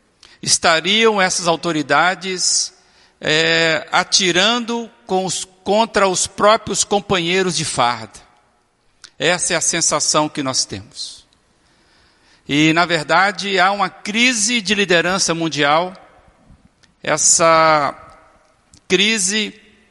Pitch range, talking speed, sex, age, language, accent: 155-195 Hz, 95 wpm, male, 60-79, Portuguese, Brazilian